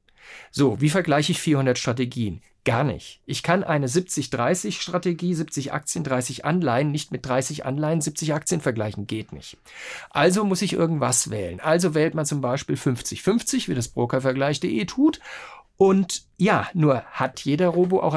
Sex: male